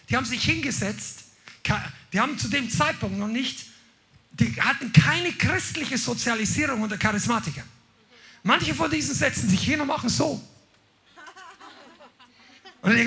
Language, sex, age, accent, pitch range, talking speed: German, male, 50-69, German, 160-230 Hz, 130 wpm